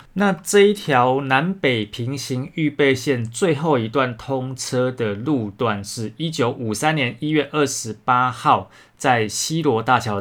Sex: male